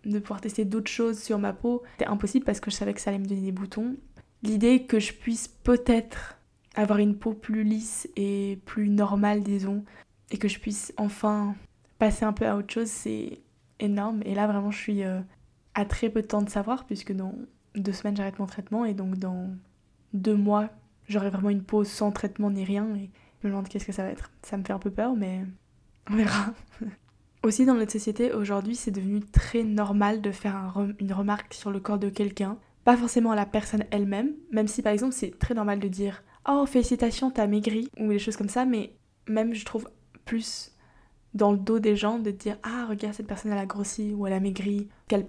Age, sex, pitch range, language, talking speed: 10-29, female, 200-220 Hz, French, 220 wpm